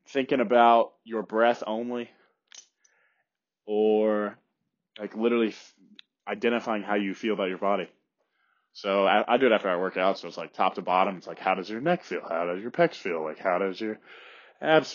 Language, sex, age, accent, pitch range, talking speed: English, male, 20-39, American, 110-155 Hz, 195 wpm